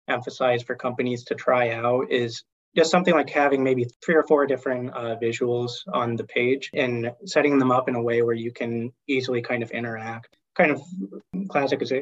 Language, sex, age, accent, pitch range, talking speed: English, male, 20-39, American, 120-135 Hz, 195 wpm